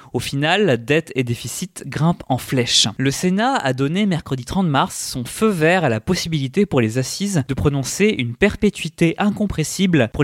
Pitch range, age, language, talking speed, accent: 135-180 Hz, 20-39, French, 180 wpm, French